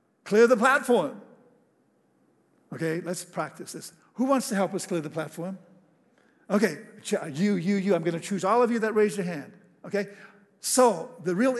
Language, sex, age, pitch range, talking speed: English, male, 60-79, 165-220 Hz, 175 wpm